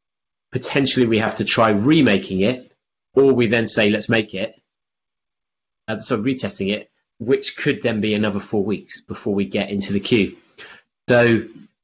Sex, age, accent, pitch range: male, 30-49, British, 100-125 Hz